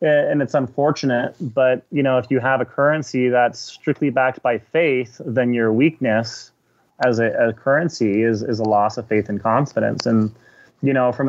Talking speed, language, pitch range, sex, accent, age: 190 wpm, English, 110-125 Hz, male, American, 30-49